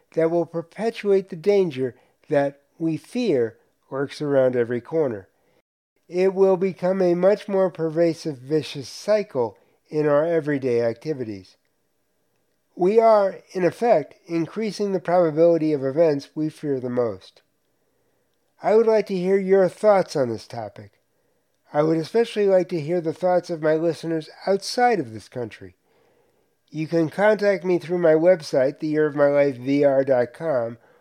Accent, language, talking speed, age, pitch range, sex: American, English, 135 wpm, 50-69, 140-185 Hz, male